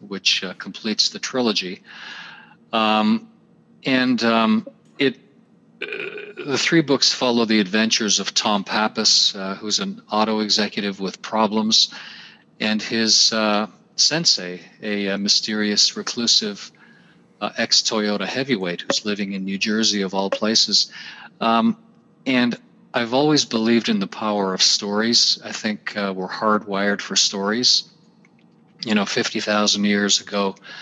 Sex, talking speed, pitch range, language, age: male, 130 wpm, 105-130 Hz, English, 40-59